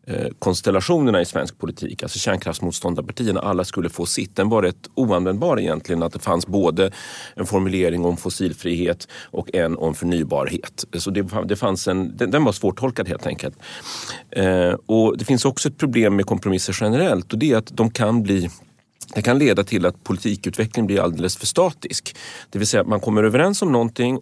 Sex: male